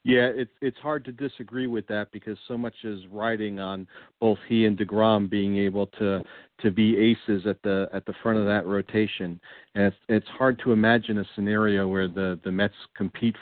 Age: 50-69